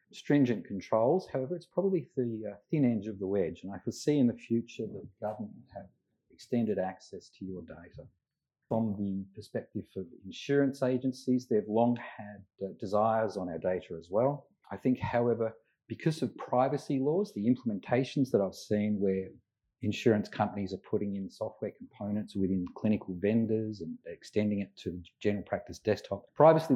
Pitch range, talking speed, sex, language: 100-130 Hz, 165 wpm, male, English